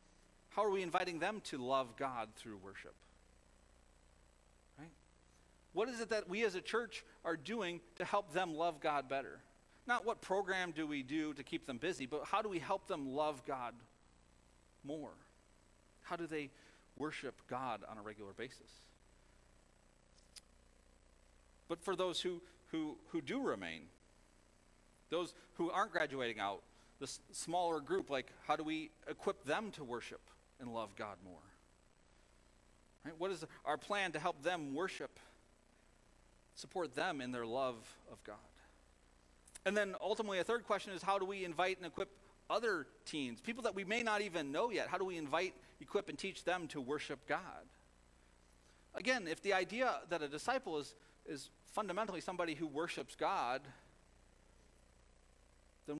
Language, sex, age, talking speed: English, male, 40-59, 155 wpm